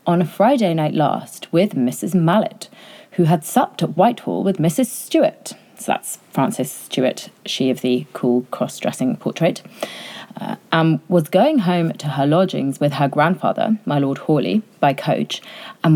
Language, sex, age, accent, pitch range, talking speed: English, female, 30-49, British, 145-215 Hz, 160 wpm